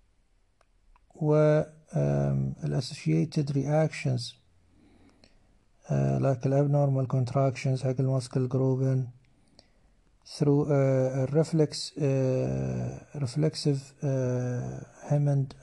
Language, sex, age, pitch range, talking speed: Arabic, male, 60-79, 100-145 Hz, 75 wpm